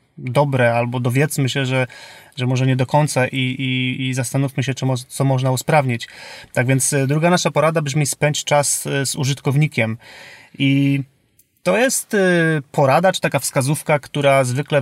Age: 30-49